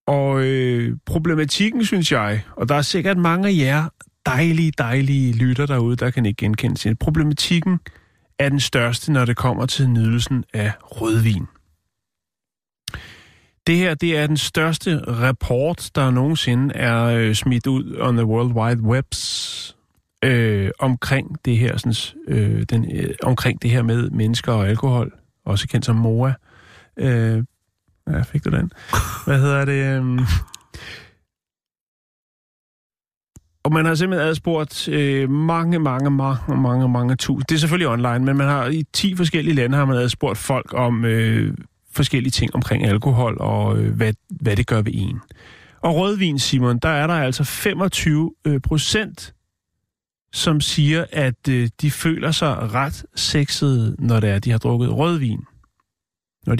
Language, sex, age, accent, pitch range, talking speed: Danish, male, 30-49, native, 115-150 Hz, 155 wpm